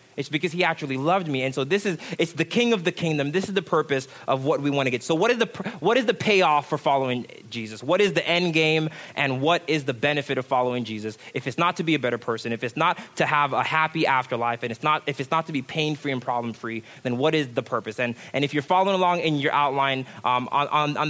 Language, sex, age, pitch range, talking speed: English, male, 20-39, 135-165 Hz, 270 wpm